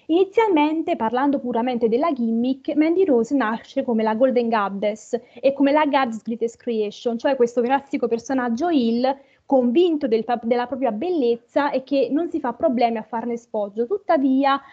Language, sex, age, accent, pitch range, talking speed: Italian, female, 30-49, native, 240-295 Hz, 150 wpm